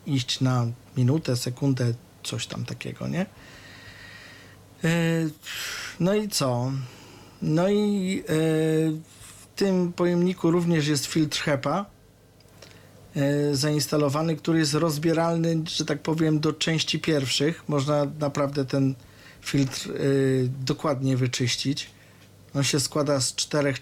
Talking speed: 105 wpm